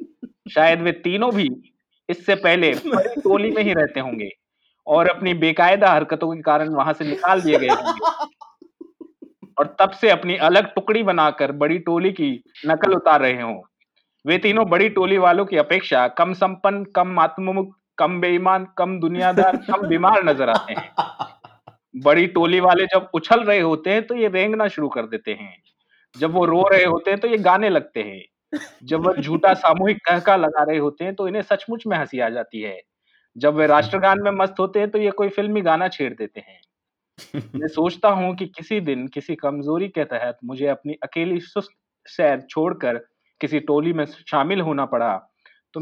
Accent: native